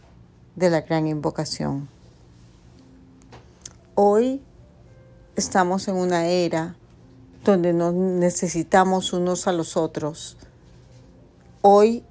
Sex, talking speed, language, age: female, 85 wpm, Spanish, 40-59